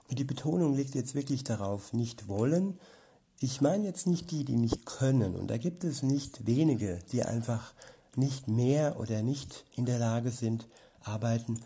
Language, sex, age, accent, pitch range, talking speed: German, male, 60-79, German, 110-130 Hz, 170 wpm